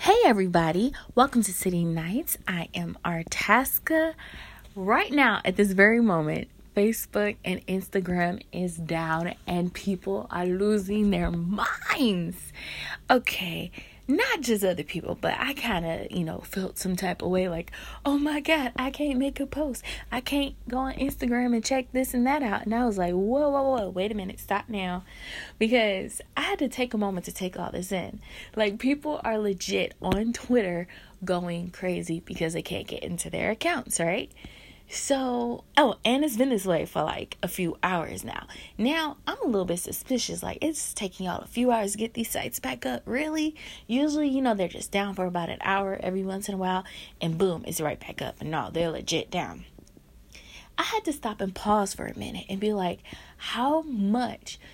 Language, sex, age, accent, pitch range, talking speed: English, female, 20-39, American, 185-255 Hz, 190 wpm